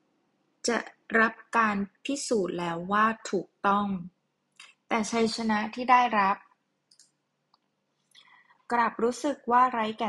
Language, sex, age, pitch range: Thai, female, 20-39, 185-240 Hz